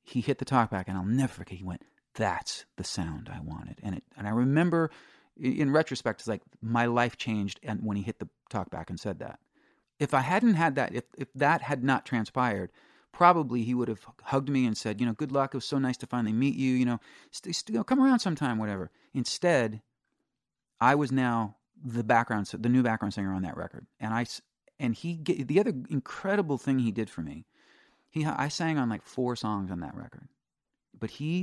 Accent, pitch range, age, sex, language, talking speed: American, 110-145 Hz, 40-59, male, English, 220 wpm